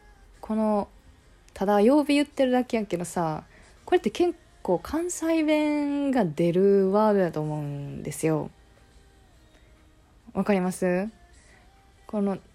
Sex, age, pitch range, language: female, 20-39, 160-235 Hz, Japanese